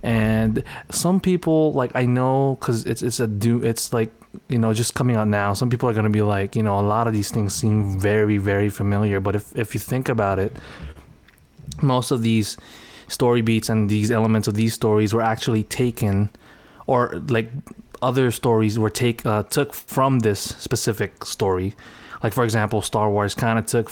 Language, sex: English, male